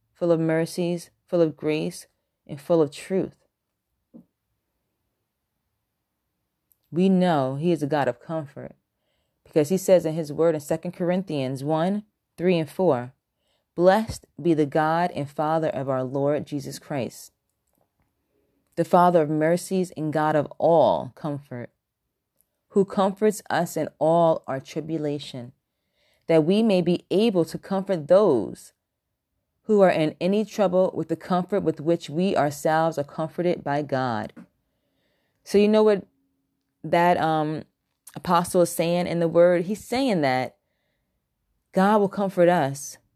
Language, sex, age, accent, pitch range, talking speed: English, female, 30-49, American, 140-175 Hz, 140 wpm